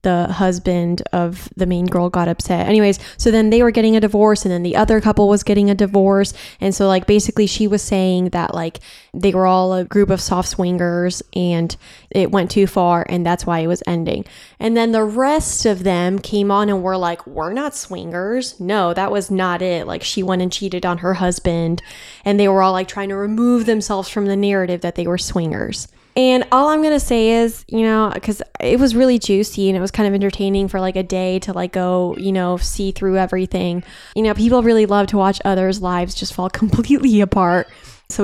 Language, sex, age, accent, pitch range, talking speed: English, female, 10-29, American, 185-220 Hz, 225 wpm